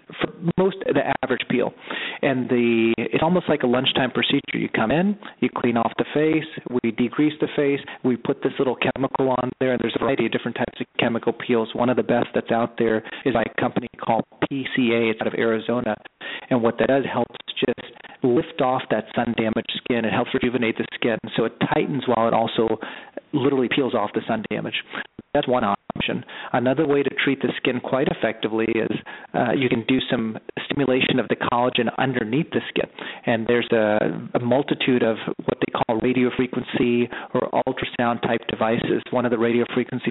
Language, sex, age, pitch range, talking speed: English, male, 40-59, 115-140 Hz, 190 wpm